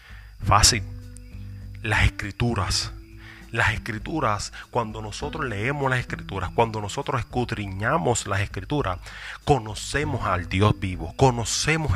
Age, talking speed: 30-49, 100 wpm